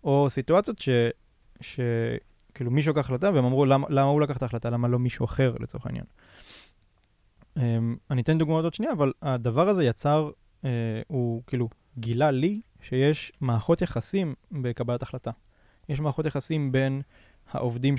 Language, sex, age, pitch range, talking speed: Hebrew, male, 20-39, 120-145 Hz, 145 wpm